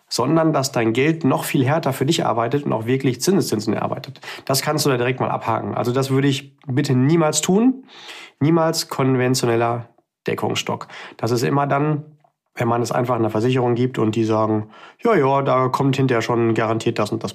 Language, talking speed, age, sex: German, 195 wpm, 30-49, male